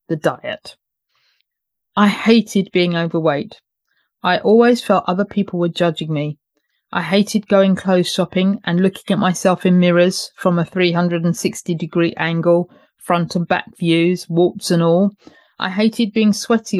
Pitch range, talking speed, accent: 165-200 Hz, 145 wpm, British